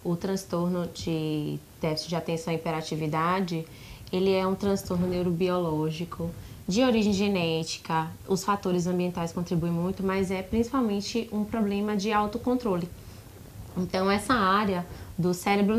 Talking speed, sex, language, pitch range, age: 125 wpm, female, Portuguese, 180-210 Hz, 20-39